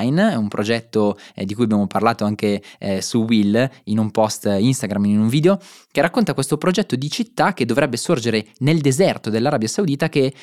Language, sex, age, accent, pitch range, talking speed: Italian, male, 20-39, native, 110-150 Hz, 190 wpm